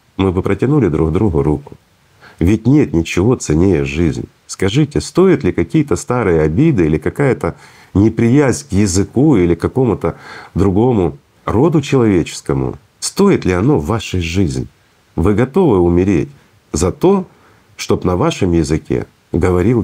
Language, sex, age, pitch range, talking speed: Russian, male, 50-69, 90-130 Hz, 135 wpm